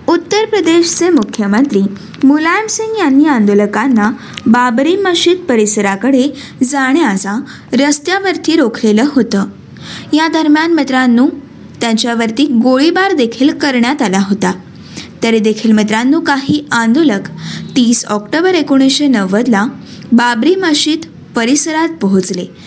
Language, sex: Marathi, female